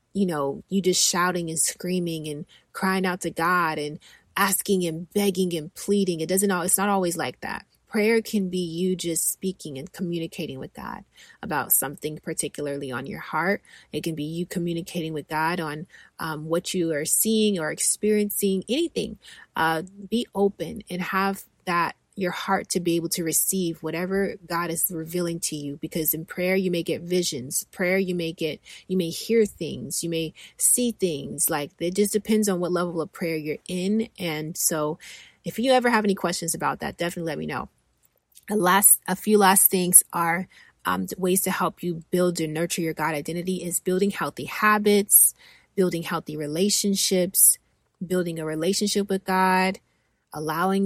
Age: 30-49